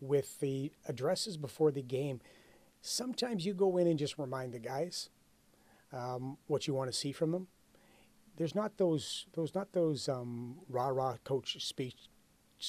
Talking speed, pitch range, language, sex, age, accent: 160 wpm, 125-155 Hz, English, male, 30-49, American